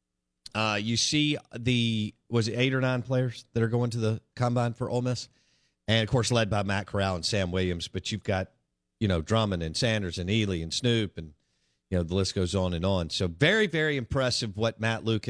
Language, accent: English, American